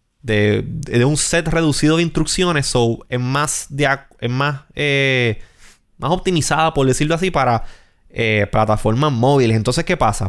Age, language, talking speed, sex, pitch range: 20-39, Spanish, 155 wpm, male, 115-150 Hz